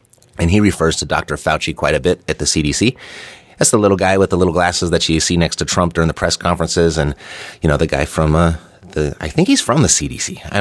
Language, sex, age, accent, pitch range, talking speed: English, male, 30-49, American, 75-90 Hz, 255 wpm